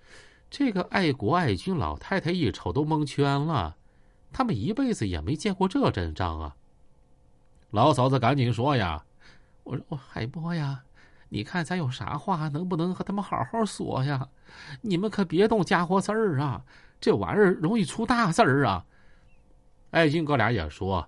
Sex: male